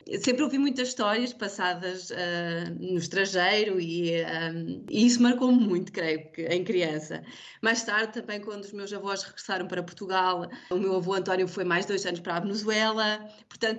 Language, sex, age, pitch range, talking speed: Portuguese, female, 20-39, 180-225 Hz, 175 wpm